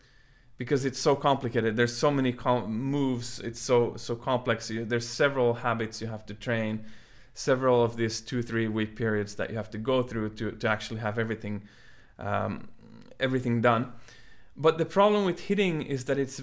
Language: English